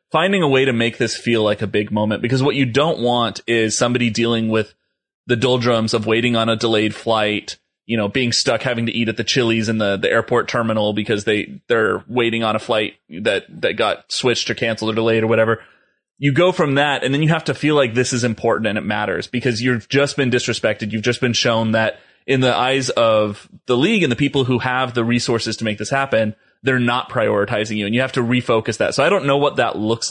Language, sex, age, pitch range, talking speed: English, male, 30-49, 110-125 Hz, 240 wpm